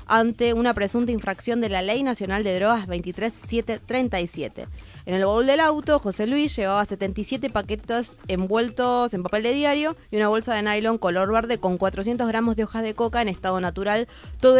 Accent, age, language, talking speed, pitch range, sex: Argentinian, 20-39, Spanish, 180 wpm, 185-235 Hz, female